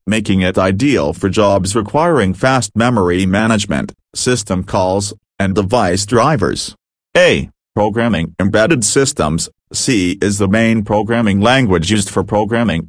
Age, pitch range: 40-59, 95-115 Hz